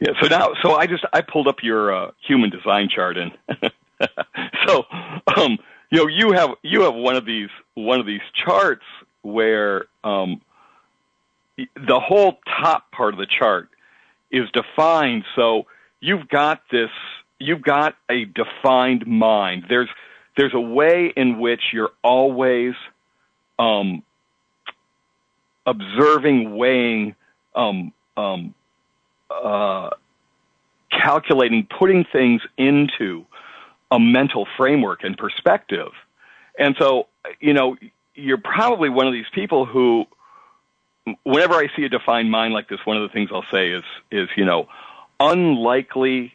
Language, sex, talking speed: English, male, 135 wpm